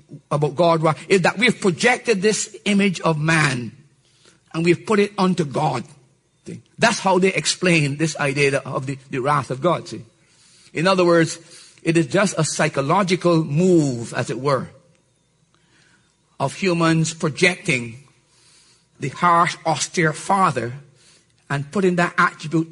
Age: 50-69